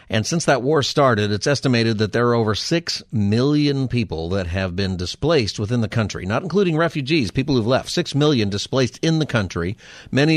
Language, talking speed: English, 195 wpm